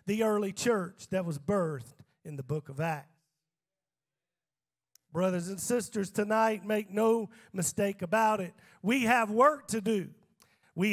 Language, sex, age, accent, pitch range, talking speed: English, male, 40-59, American, 180-240 Hz, 145 wpm